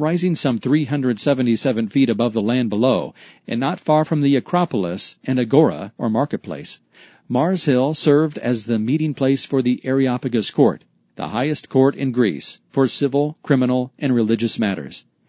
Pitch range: 120-145 Hz